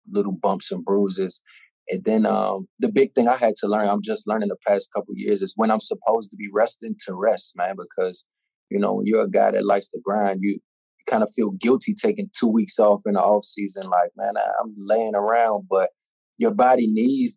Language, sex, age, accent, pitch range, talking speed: English, male, 20-39, American, 100-130 Hz, 230 wpm